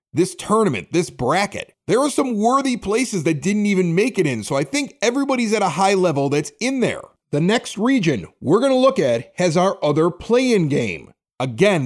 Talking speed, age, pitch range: 200 wpm, 40-59, 150-215 Hz